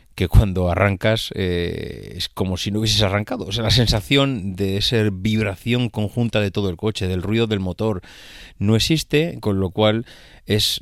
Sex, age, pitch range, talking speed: male, 30-49, 100-130 Hz, 175 wpm